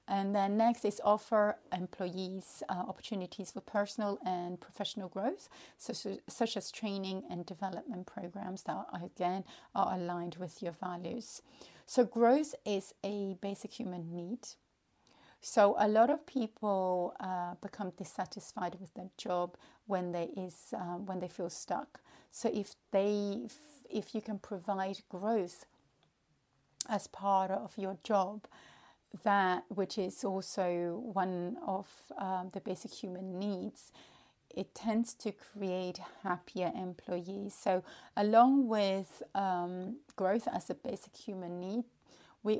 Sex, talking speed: female, 135 wpm